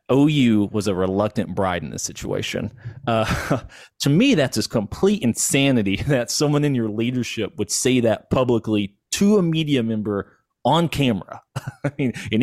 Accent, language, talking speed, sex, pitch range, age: American, English, 150 wpm, male, 100-135 Hz, 30-49